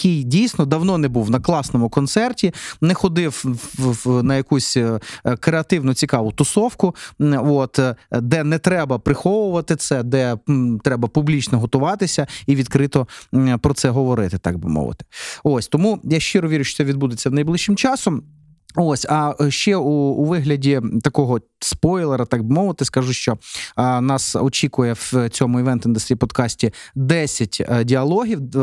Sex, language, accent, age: male, Ukrainian, native, 30-49